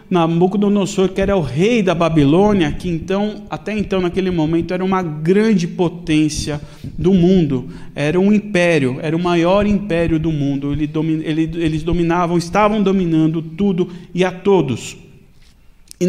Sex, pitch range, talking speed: male, 160-195 Hz, 140 wpm